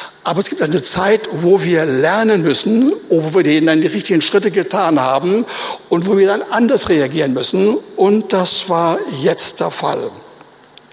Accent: German